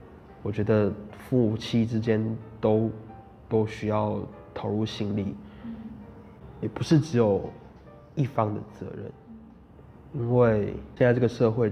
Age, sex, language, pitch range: 20-39, male, Chinese, 100-110 Hz